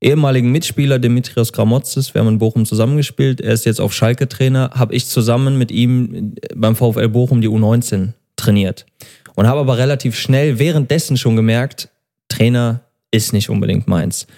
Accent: German